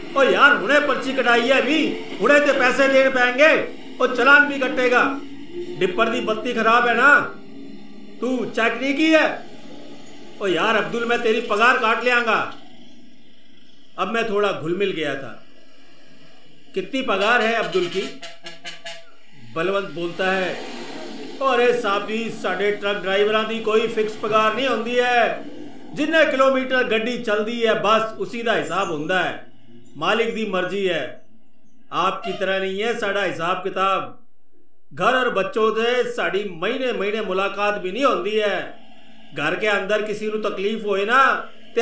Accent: native